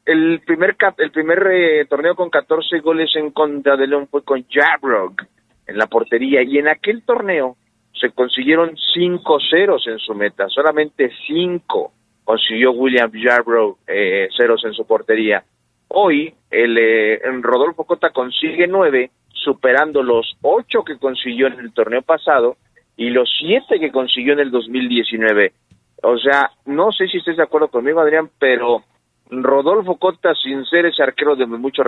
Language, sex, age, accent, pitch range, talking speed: Spanish, male, 50-69, Mexican, 115-165 Hz, 155 wpm